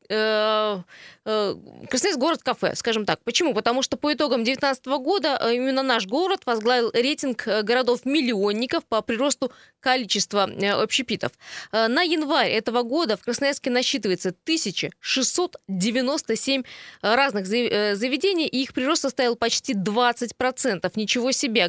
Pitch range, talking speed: 215-270 Hz, 110 wpm